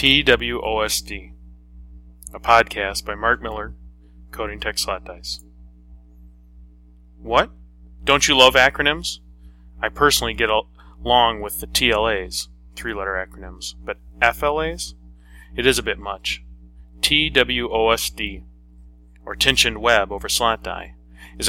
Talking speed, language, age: 110 wpm, English, 30-49